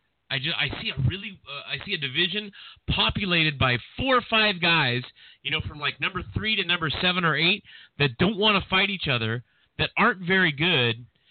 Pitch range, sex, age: 120-155 Hz, male, 30-49